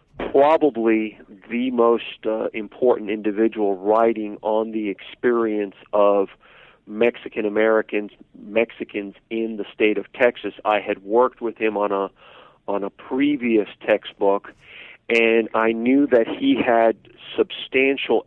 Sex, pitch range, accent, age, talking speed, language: male, 105-120 Hz, American, 50-69, 115 wpm, English